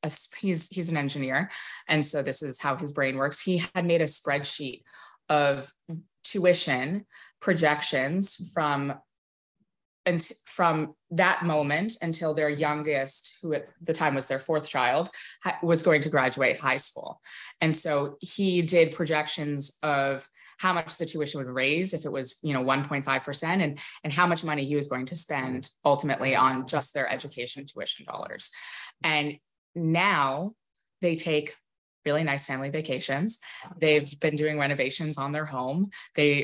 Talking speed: 155 wpm